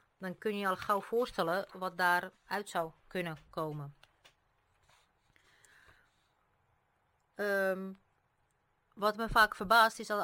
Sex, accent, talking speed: female, Dutch, 110 wpm